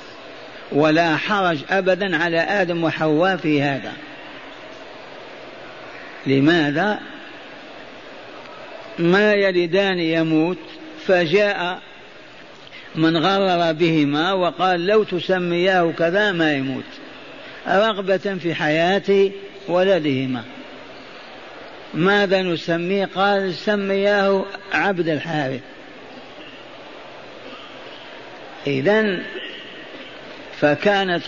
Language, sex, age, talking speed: Arabic, male, 50-69, 65 wpm